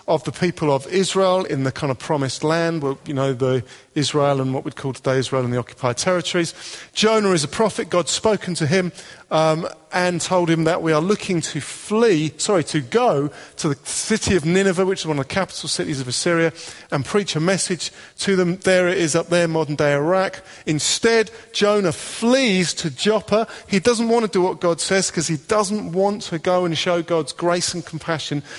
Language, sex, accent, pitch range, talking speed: English, male, British, 155-190 Hz, 210 wpm